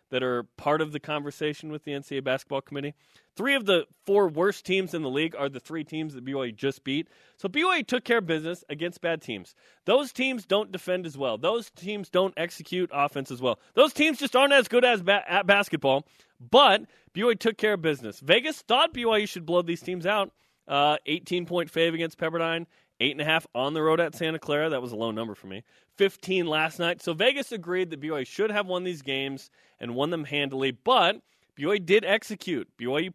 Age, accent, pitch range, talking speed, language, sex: 20-39, American, 145-200 Hz, 215 wpm, English, male